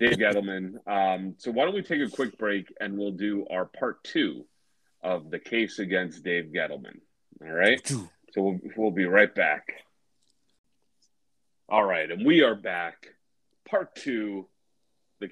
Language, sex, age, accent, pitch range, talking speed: English, male, 30-49, American, 85-110 Hz, 155 wpm